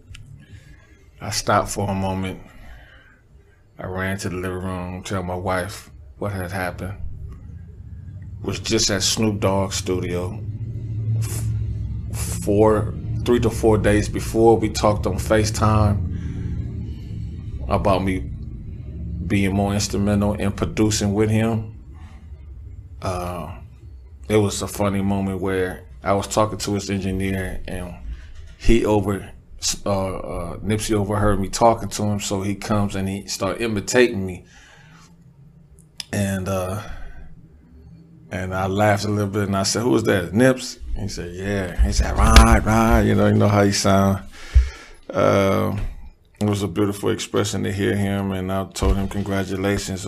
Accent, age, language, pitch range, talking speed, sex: American, 20-39, English, 95-105 Hz, 140 wpm, male